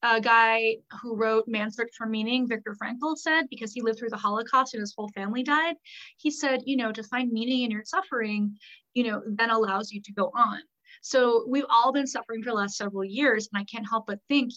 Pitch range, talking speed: 205-245 Hz, 230 wpm